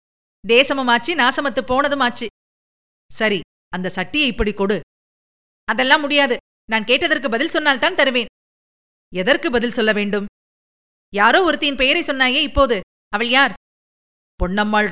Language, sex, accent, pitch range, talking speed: Tamil, female, native, 200-275 Hz, 115 wpm